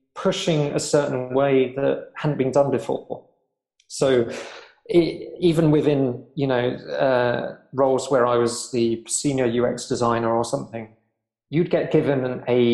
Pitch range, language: 120-145 Hz, English